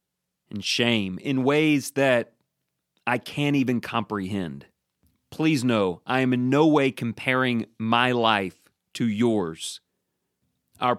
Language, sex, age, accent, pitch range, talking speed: English, male, 40-59, American, 105-155 Hz, 120 wpm